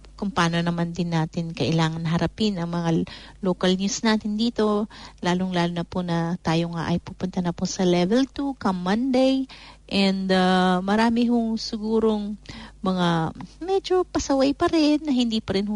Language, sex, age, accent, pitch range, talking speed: English, female, 40-59, Filipino, 180-215 Hz, 165 wpm